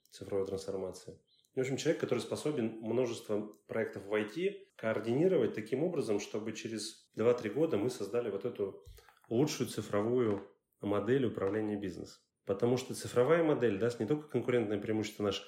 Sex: male